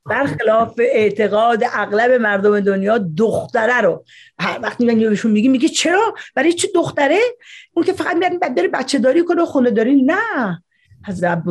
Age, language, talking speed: 40-59, Persian, 140 wpm